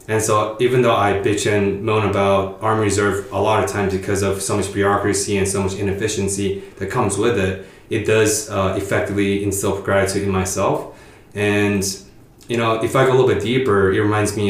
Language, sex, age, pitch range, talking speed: English, male, 20-39, 95-110 Hz, 205 wpm